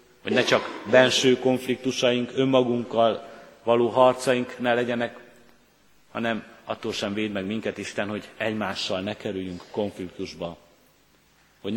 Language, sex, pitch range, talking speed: Hungarian, male, 100-125 Hz, 115 wpm